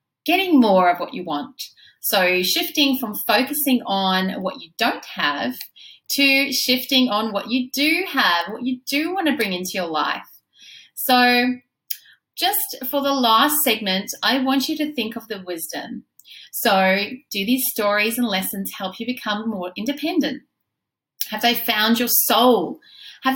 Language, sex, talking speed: English, female, 160 wpm